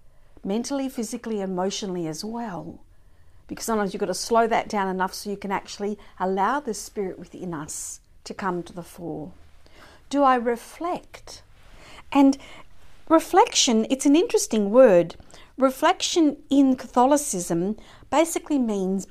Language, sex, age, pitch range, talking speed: English, female, 50-69, 190-255 Hz, 130 wpm